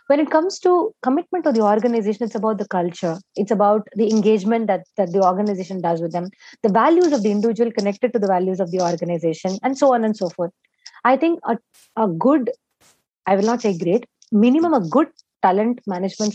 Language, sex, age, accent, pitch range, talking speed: English, female, 30-49, Indian, 190-240 Hz, 205 wpm